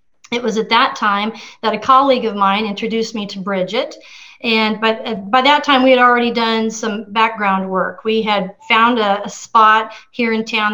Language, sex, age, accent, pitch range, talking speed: English, female, 40-59, American, 220-265 Hz, 195 wpm